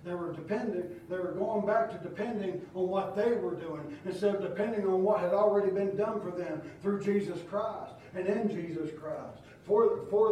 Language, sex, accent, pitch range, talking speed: English, male, American, 195-245 Hz, 200 wpm